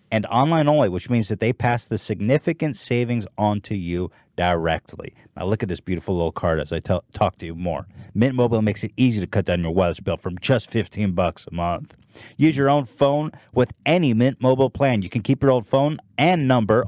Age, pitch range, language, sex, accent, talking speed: 30-49, 105-140 Hz, English, male, American, 225 wpm